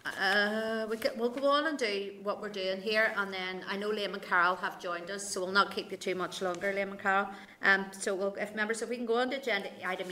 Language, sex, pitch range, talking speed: English, female, 180-200 Hz, 275 wpm